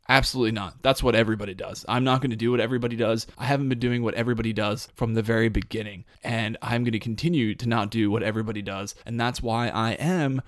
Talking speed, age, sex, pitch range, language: 235 wpm, 20-39, male, 110-125 Hz, English